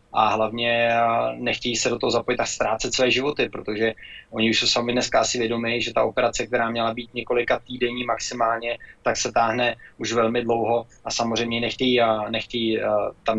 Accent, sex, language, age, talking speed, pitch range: native, male, Czech, 20-39, 175 wpm, 110-120 Hz